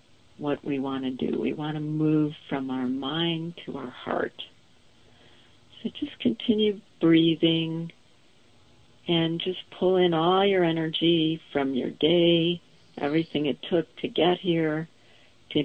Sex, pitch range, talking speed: female, 125-160 Hz, 140 wpm